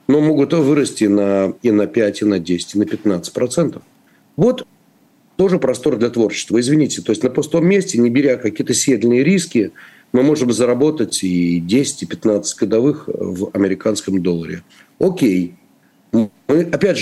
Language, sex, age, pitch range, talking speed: Russian, male, 40-59, 105-150 Hz, 155 wpm